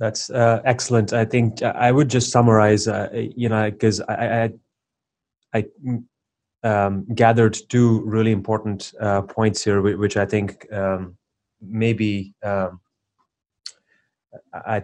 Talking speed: 130 wpm